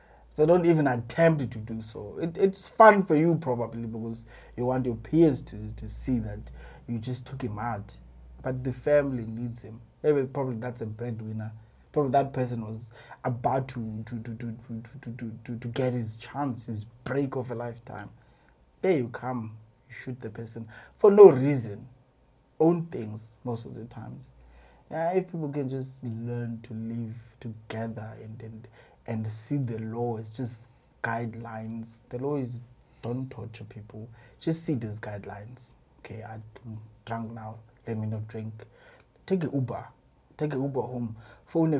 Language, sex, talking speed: English, male, 175 wpm